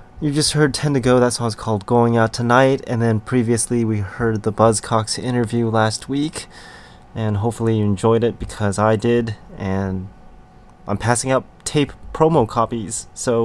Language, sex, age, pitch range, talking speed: English, male, 20-39, 105-125 Hz, 175 wpm